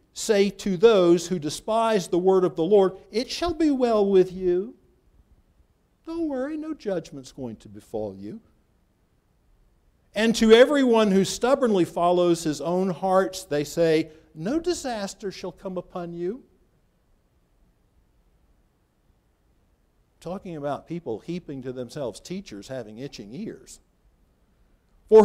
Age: 50-69